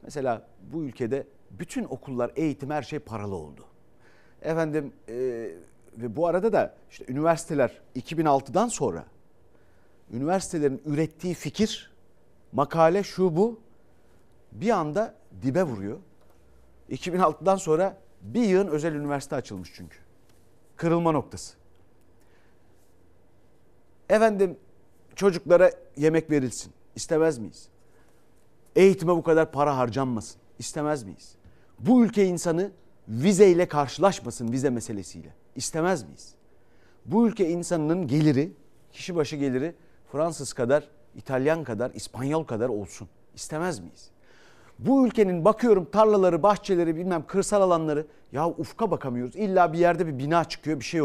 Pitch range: 120-180 Hz